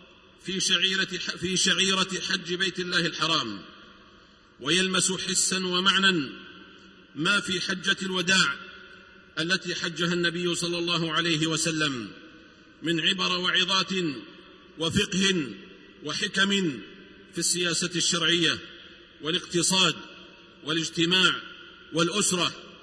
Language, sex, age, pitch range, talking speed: Arabic, male, 50-69, 155-185 Hz, 80 wpm